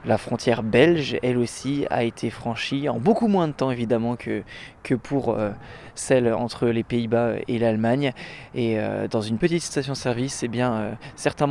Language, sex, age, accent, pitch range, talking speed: French, male, 20-39, French, 120-140 Hz, 160 wpm